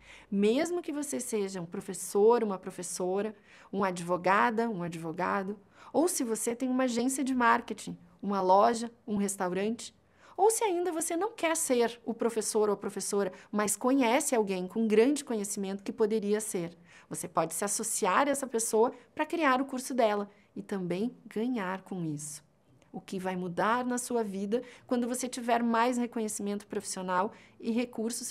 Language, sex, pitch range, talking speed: Portuguese, female, 195-245 Hz, 165 wpm